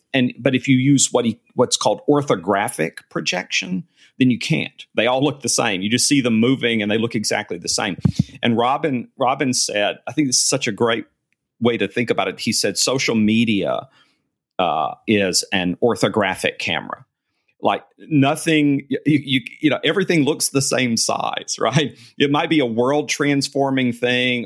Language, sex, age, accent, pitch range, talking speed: English, male, 40-59, American, 105-140 Hz, 180 wpm